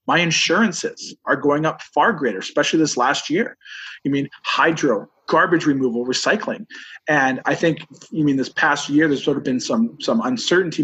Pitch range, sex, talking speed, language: 125-165 Hz, male, 190 wpm, English